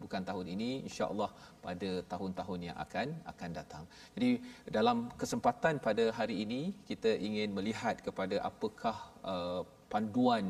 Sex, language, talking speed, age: male, Malayalam, 130 wpm, 40-59